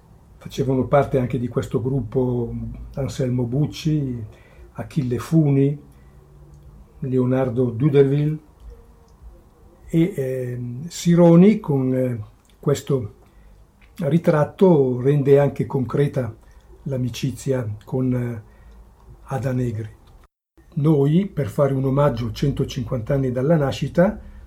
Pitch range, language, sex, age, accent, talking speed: 120-140 Hz, Italian, male, 60-79, native, 90 wpm